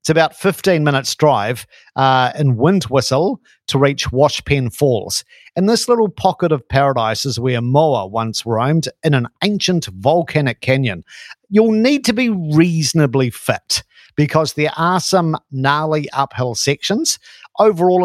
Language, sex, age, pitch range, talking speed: English, male, 50-69, 120-160 Hz, 145 wpm